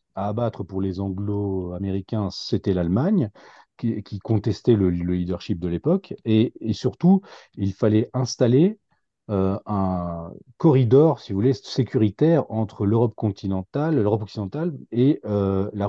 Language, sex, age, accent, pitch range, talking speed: French, male, 40-59, French, 95-120 Hz, 135 wpm